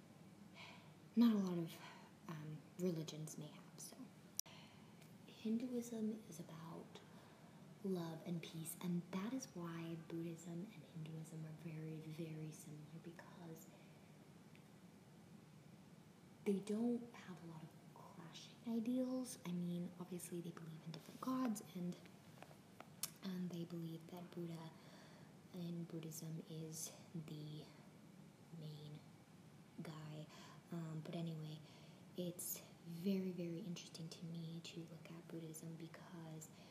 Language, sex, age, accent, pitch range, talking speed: English, female, 20-39, American, 165-185 Hz, 115 wpm